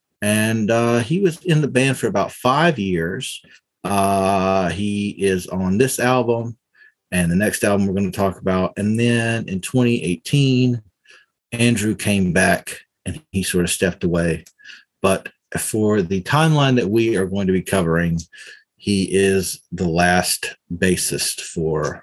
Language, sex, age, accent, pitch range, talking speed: English, male, 40-59, American, 90-125 Hz, 155 wpm